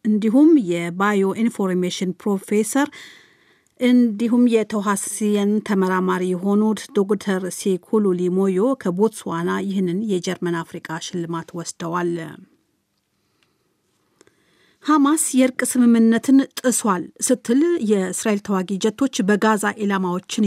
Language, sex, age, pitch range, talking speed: Amharic, female, 40-59, 185-230 Hz, 80 wpm